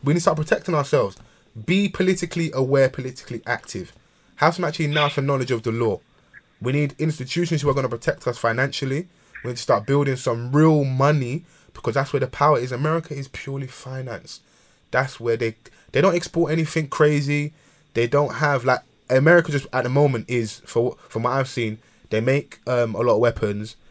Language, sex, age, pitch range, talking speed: English, male, 20-39, 115-145 Hz, 195 wpm